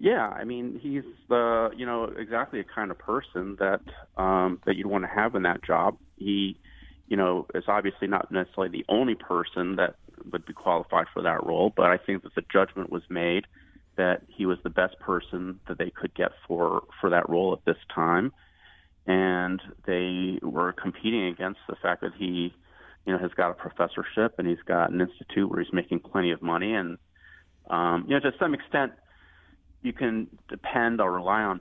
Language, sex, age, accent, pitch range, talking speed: English, male, 30-49, American, 85-100 Hz, 195 wpm